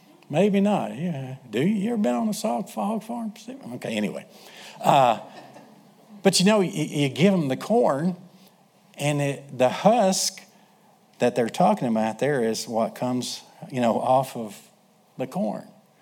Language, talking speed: English, 160 wpm